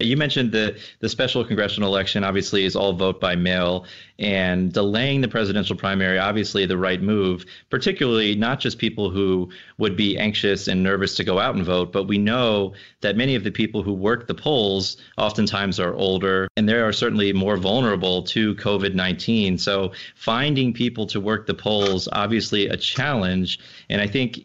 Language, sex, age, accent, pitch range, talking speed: English, male, 30-49, American, 95-110 Hz, 180 wpm